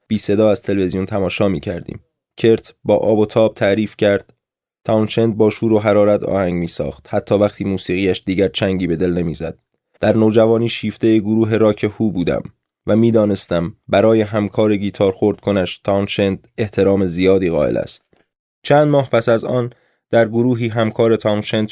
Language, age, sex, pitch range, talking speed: Persian, 20-39, male, 100-115 Hz, 150 wpm